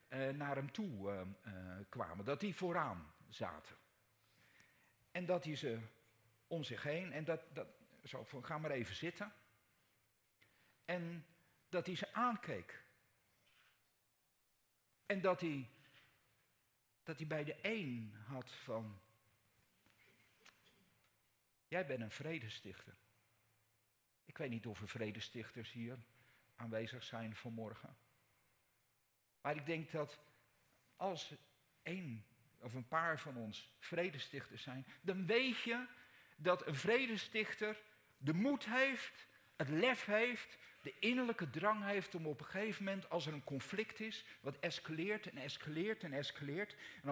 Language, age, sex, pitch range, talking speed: Dutch, 50-69, male, 115-180 Hz, 130 wpm